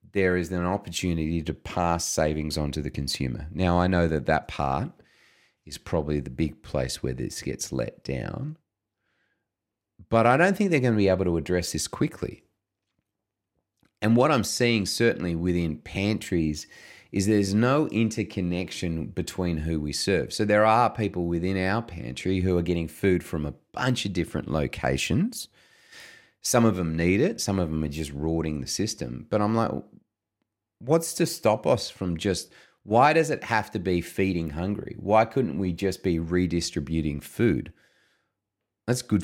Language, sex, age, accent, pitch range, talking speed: English, male, 30-49, Australian, 80-105 Hz, 170 wpm